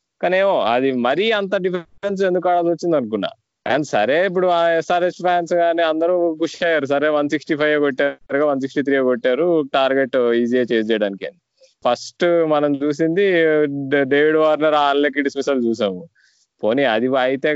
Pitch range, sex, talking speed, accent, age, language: 135-175 Hz, male, 145 wpm, native, 20-39, Telugu